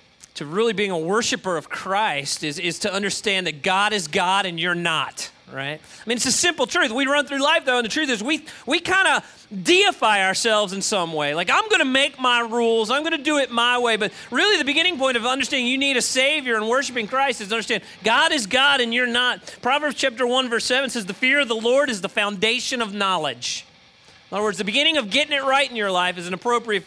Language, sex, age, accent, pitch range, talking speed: English, male, 30-49, American, 210-270 Hz, 250 wpm